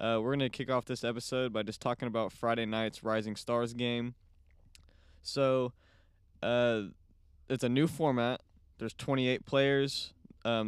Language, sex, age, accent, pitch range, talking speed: English, male, 20-39, American, 105-125 Hz, 150 wpm